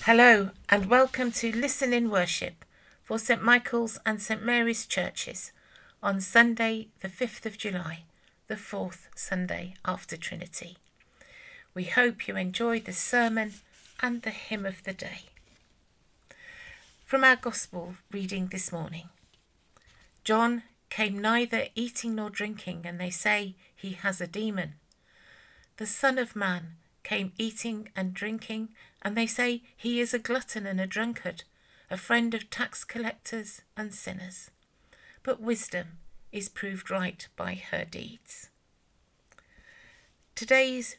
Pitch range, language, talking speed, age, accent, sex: 190-235 Hz, English, 130 wpm, 50-69, British, female